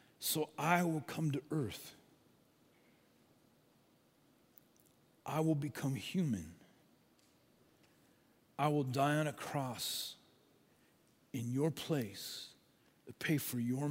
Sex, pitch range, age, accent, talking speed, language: male, 125-155 Hz, 50-69, American, 100 wpm, English